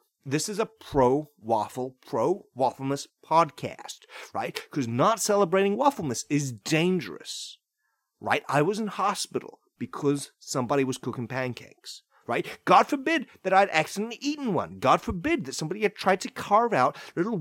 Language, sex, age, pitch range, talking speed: English, male, 30-49, 135-210 Hz, 140 wpm